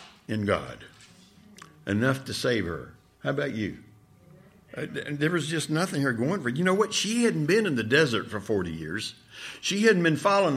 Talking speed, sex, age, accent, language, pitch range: 180 wpm, male, 60-79, American, English, 125-190 Hz